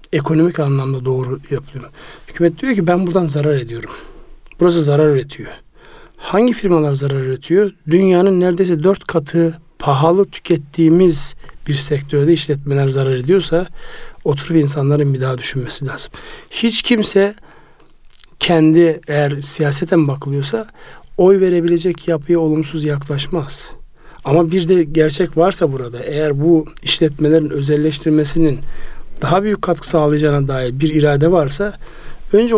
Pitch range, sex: 145-180 Hz, male